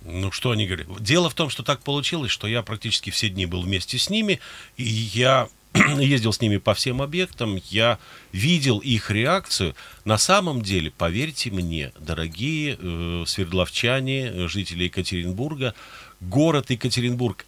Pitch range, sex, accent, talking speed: 95-125 Hz, male, native, 150 wpm